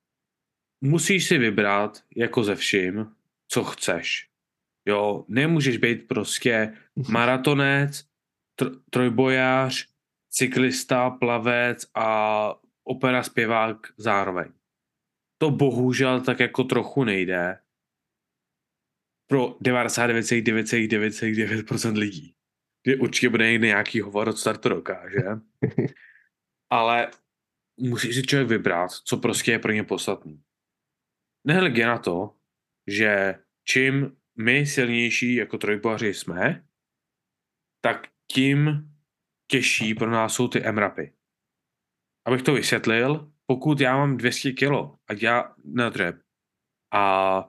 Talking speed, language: 100 wpm, Czech